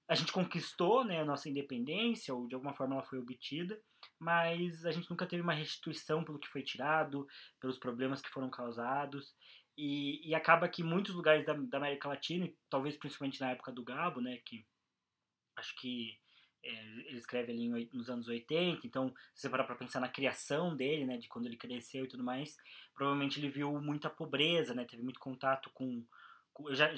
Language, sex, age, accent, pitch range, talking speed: Portuguese, male, 20-39, Brazilian, 130-155 Hz, 190 wpm